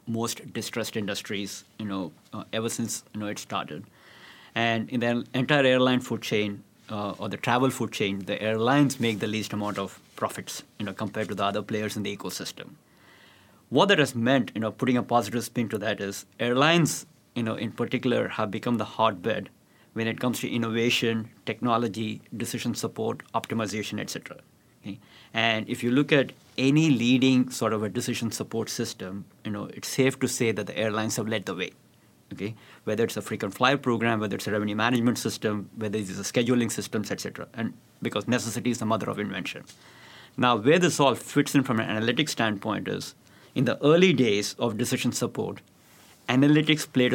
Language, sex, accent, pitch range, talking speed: English, male, Indian, 105-125 Hz, 190 wpm